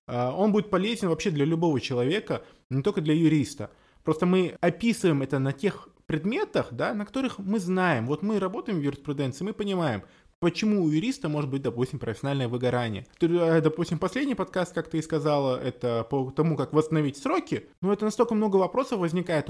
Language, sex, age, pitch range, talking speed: Russian, male, 20-39, 135-185 Hz, 175 wpm